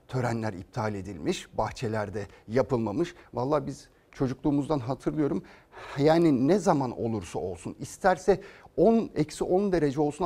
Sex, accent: male, native